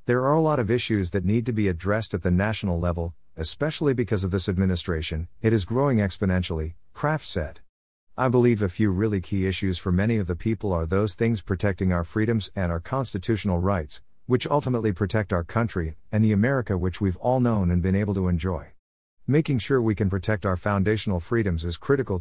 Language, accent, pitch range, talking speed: English, American, 90-115 Hz, 205 wpm